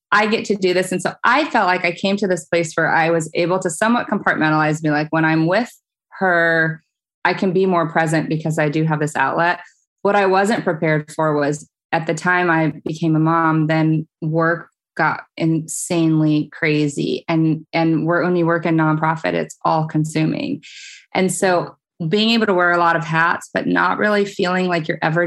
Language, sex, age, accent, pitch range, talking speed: English, female, 20-39, American, 160-180 Hz, 195 wpm